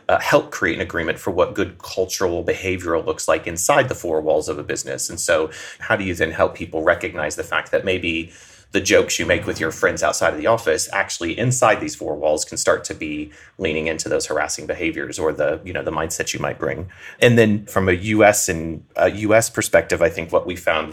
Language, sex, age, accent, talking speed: English, male, 30-49, American, 230 wpm